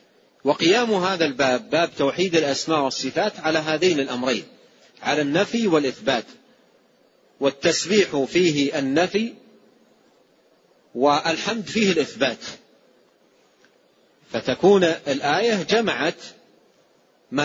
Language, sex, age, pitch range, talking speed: Arabic, male, 40-59, 140-180 Hz, 80 wpm